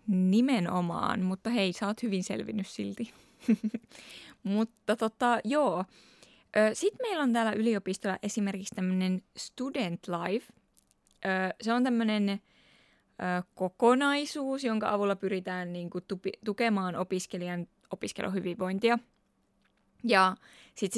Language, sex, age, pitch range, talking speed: Finnish, female, 20-39, 185-230 Hz, 95 wpm